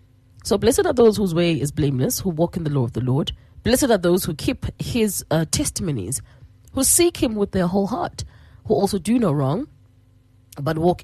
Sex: female